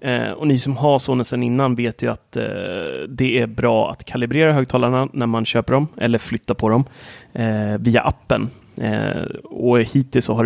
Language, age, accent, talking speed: Swedish, 30-49, native, 185 wpm